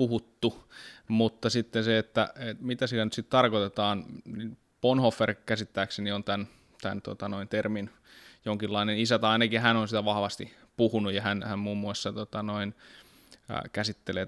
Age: 20-39